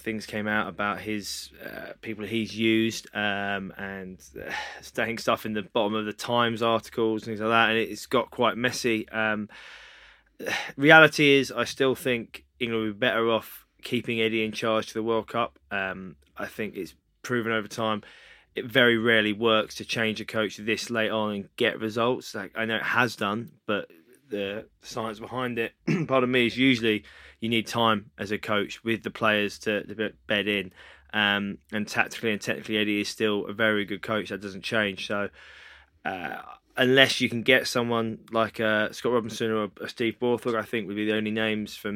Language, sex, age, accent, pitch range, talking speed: English, male, 20-39, British, 105-115 Hz, 195 wpm